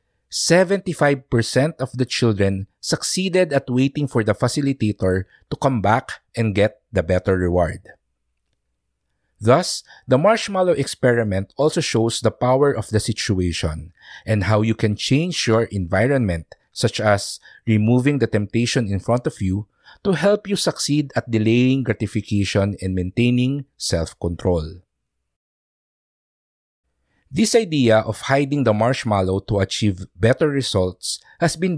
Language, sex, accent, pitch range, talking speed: English, male, Filipino, 100-140 Hz, 125 wpm